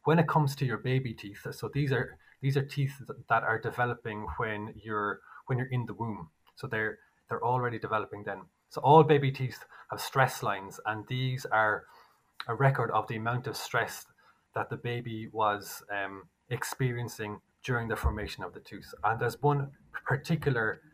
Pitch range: 110-135 Hz